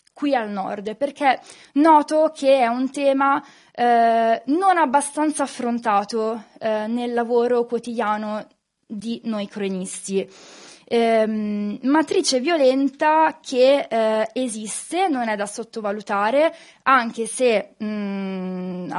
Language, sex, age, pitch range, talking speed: Italian, female, 20-39, 215-270 Hz, 105 wpm